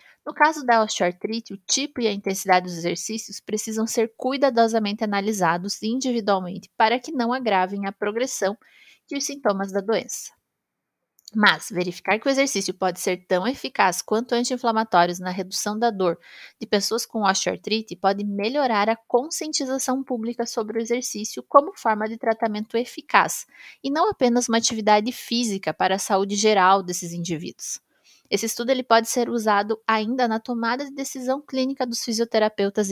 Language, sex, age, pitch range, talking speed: Portuguese, female, 20-39, 200-245 Hz, 150 wpm